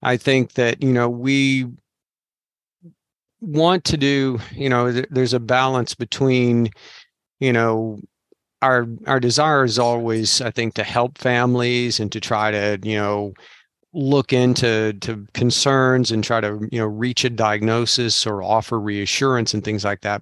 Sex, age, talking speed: male, 40-59, 155 wpm